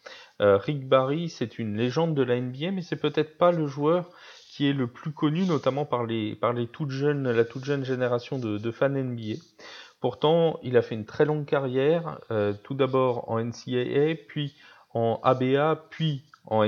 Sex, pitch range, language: male, 110-145 Hz, French